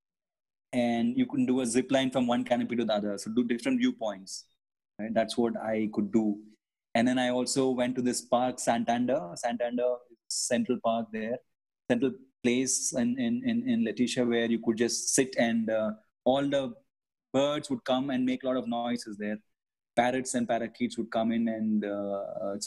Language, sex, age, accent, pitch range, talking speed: English, male, 20-39, Indian, 110-130 Hz, 190 wpm